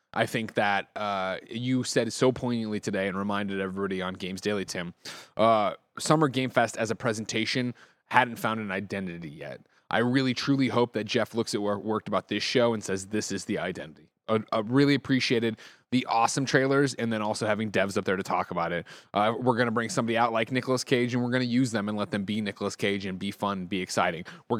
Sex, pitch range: male, 105-130 Hz